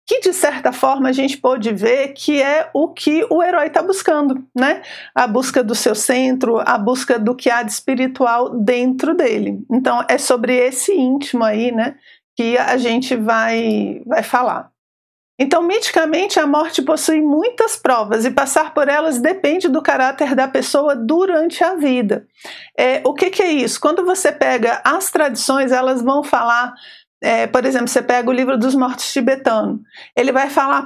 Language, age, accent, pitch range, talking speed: Portuguese, 50-69, Brazilian, 235-315 Hz, 175 wpm